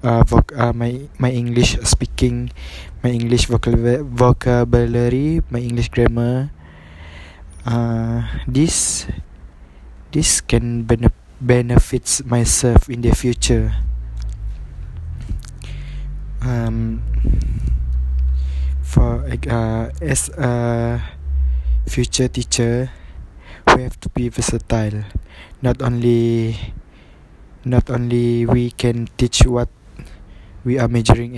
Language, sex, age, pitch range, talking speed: English, male, 20-39, 90-120 Hz, 90 wpm